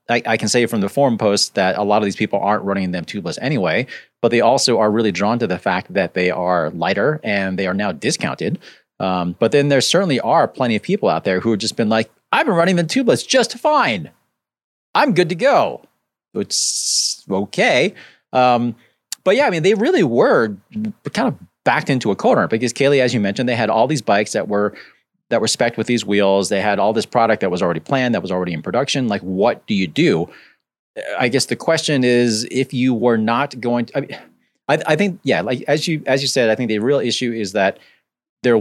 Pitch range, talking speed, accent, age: 95-130 Hz, 225 wpm, American, 30-49